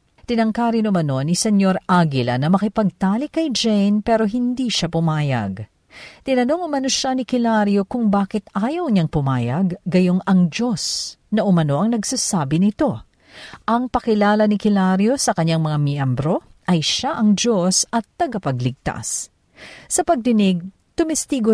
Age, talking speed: 50-69, 135 wpm